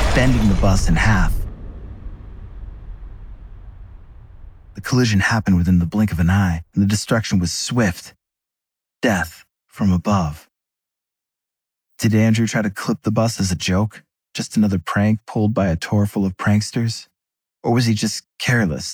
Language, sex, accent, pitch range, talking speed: English, male, American, 85-105 Hz, 150 wpm